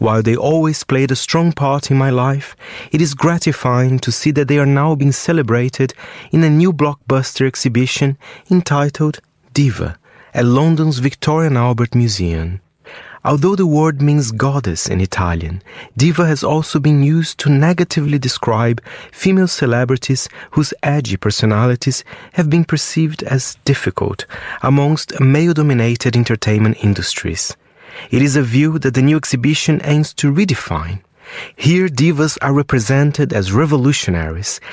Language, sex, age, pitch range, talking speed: English, male, 30-49, 125-155 Hz, 140 wpm